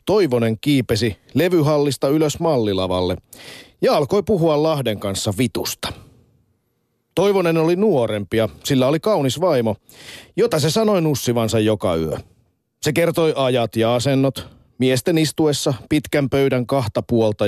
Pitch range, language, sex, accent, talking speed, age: 110-150 Hz, Finnish, male, native, 120 wpm, 40-59